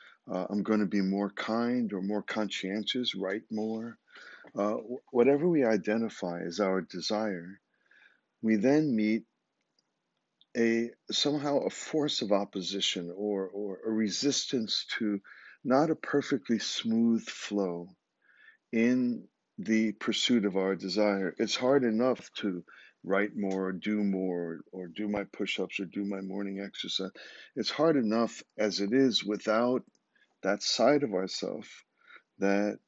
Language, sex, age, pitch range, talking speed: English, male, 50-69, 95-110 Hz, 140 wpm